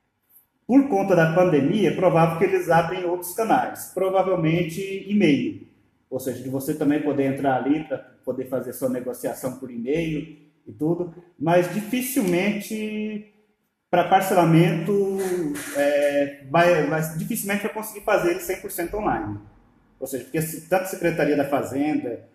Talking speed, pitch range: 140 wpm, 150-195 Hz